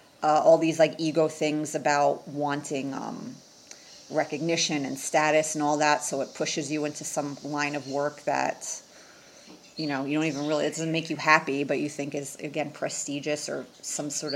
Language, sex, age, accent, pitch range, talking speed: English, female, 30-49, American, 145-180 Hz, 190 wpm